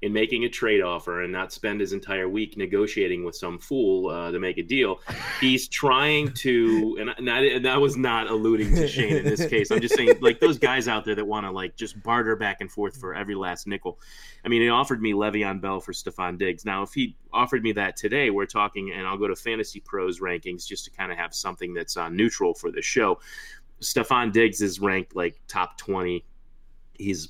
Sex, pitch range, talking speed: male, 90-115 Hz, 220 wpm